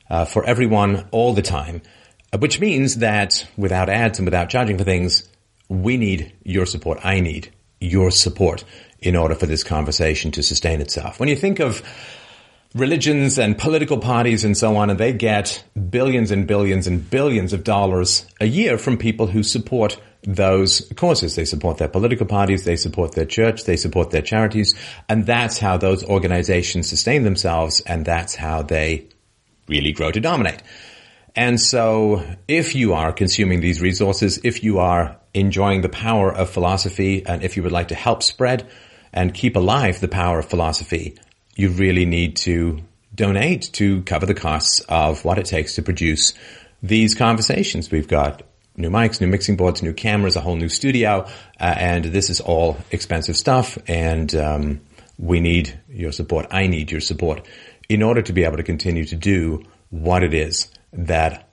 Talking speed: 175 wpm